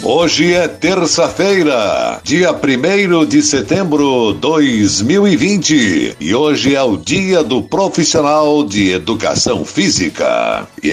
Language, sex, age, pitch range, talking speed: Portuguese, male, 60-79, 120-155 Hz, 110 wpm